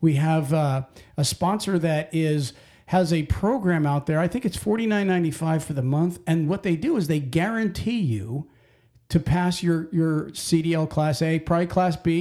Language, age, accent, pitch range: English, 50-69, American, 145-185 Hz